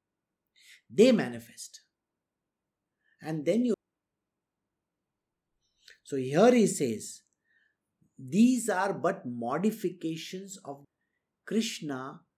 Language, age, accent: English, 50-69, Indian